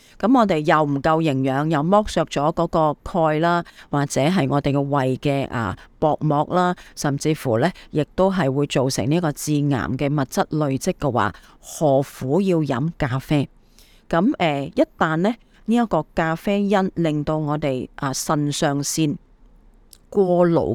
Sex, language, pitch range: female, Chinese, 145-180 Hz